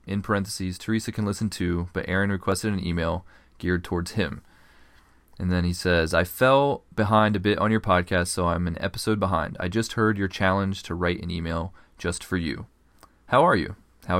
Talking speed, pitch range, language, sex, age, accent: 200 wpm, 90-110 Hz, English, male, 30-49, American